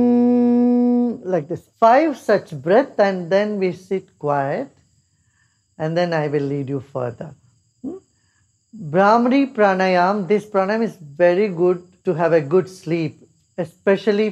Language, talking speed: English, 130 wpm